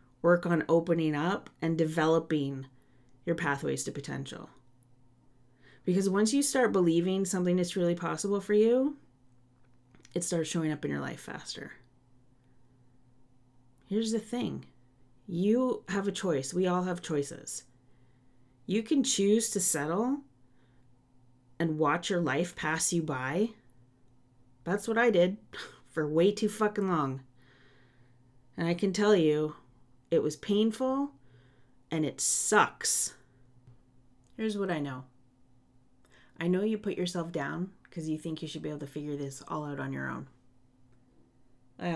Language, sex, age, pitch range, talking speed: English, female, 30-49, 125-175 Hz, 140 wpm